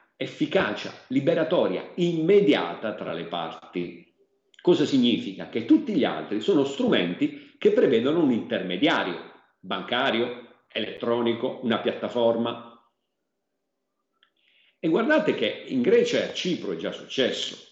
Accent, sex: native, male